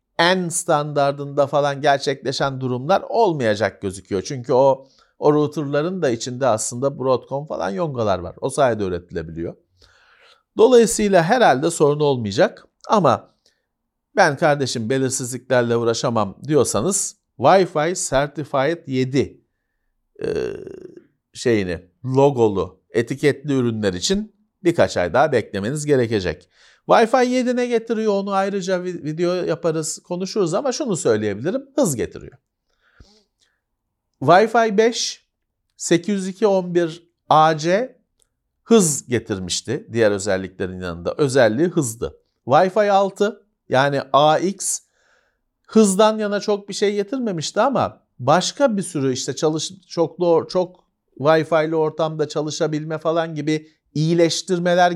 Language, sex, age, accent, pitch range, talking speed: Turkish, male, 50-69, native, 135-195 Hz, 100 wpm